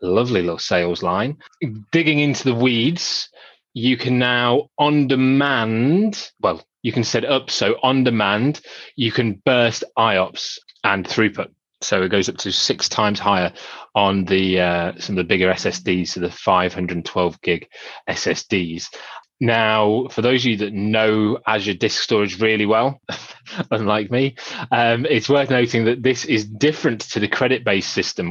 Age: 20-39